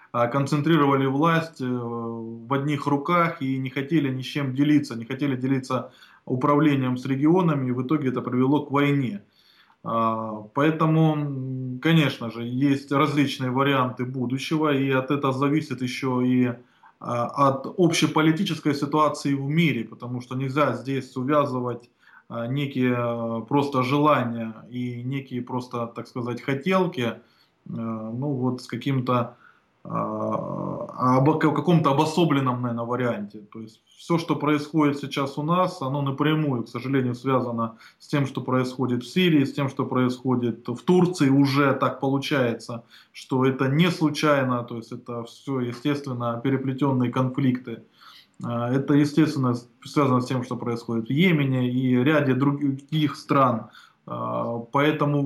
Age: 20-39